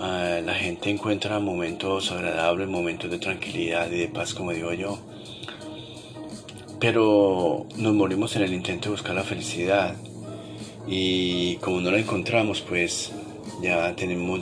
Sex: male